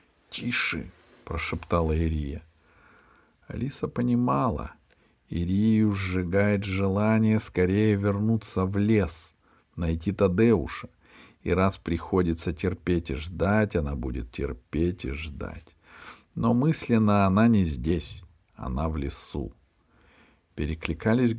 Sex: male